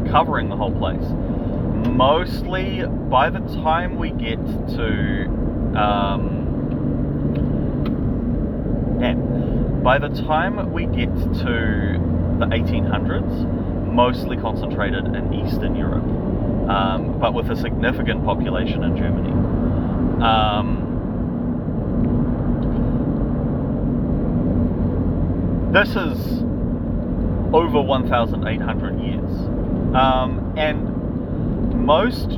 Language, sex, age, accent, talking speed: English, male, 30-49, Australian, 80 wpm